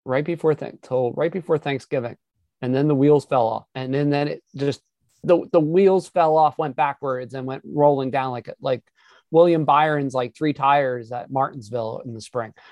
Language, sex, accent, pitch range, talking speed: English, male, American, 140-185 Hz, 190 wpm